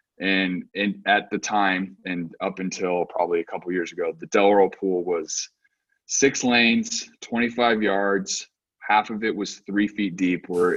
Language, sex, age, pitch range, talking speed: English, male, 20-39, 90-110 Hz, 160 wpm